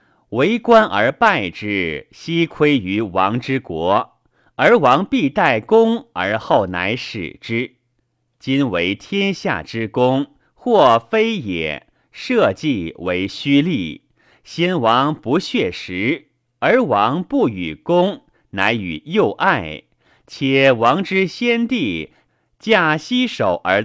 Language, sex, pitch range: Chinese, male, 110-170 Hz